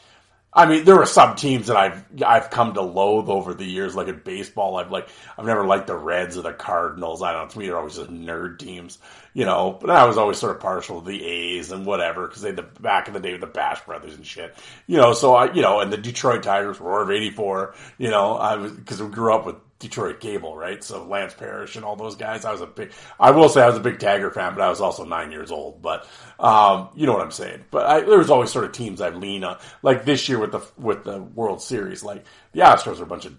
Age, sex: 30-49, male